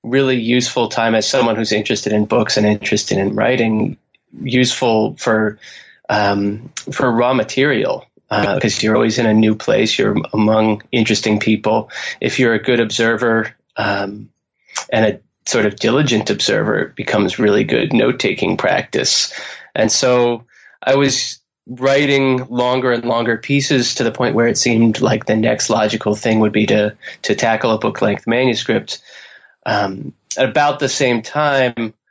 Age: 20-39